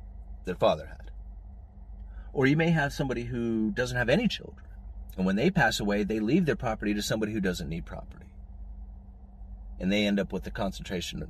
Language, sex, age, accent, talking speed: English, male, 30-49, American, 185 wpm